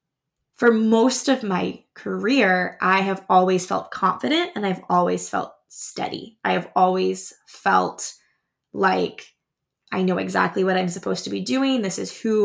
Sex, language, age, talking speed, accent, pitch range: female, English, 20-39, 155 wpm, American, 185-230 Hz